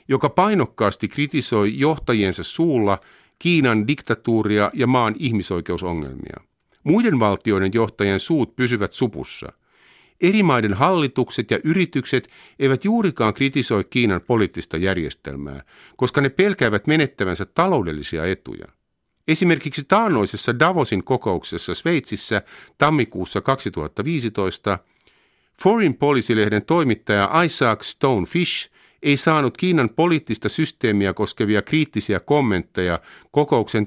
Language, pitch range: Finnish, 100-145 Hz